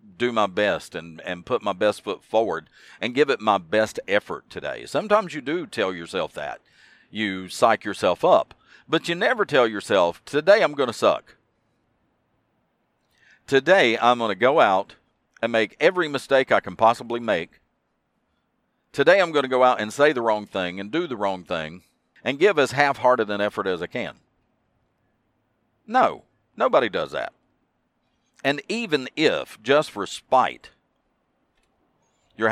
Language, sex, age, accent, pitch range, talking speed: English, male, 50-69, American, 95-125 Hz, 160 wpm